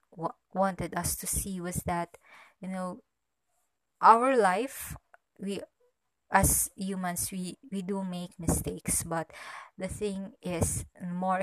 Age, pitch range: 20-39, 170-200 Hz